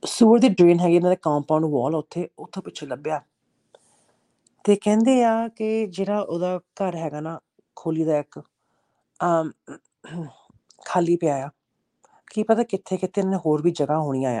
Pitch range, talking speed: 150-195 Hz, 160 wpm